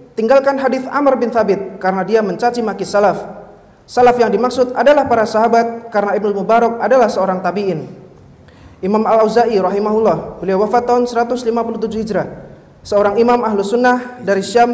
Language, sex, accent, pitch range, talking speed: Indonesian, male, native, 200-240 Hz, 150 wpm